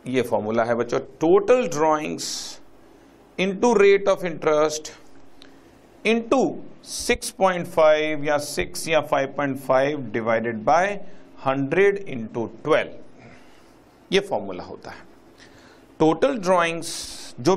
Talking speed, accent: 90 wpm, native